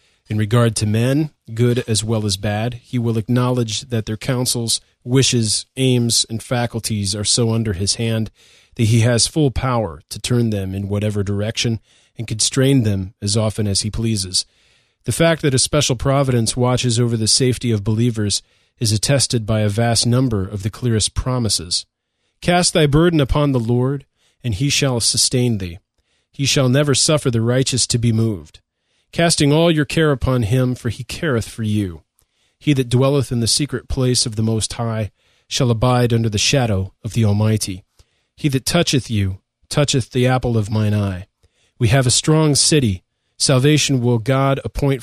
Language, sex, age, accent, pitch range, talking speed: English, male, 40-59, American, 110-130 Hz, 180 wpm